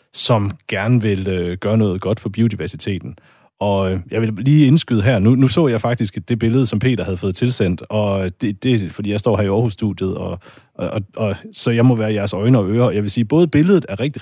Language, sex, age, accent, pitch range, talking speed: Danish, male, 30-49, native, 100-130 Hz, 230 wpm